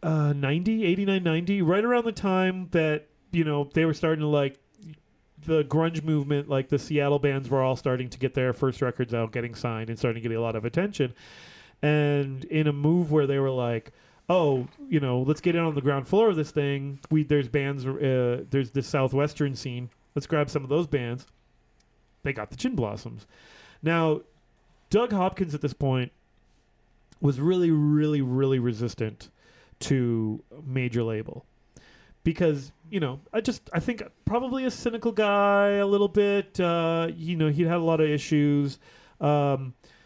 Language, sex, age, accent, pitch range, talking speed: English, male, 30-49, American, 130-165 Hz, 180 wpm